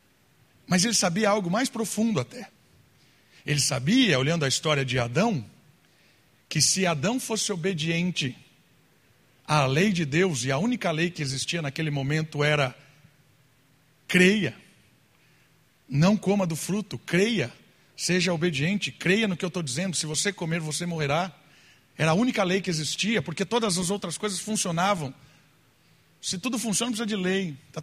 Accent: Brazilian